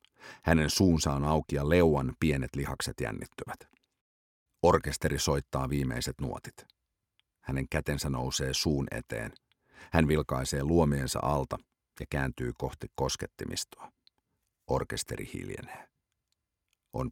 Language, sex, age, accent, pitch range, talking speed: English, male, 50-69, Finnish, 70-85 Hz, 100 wpm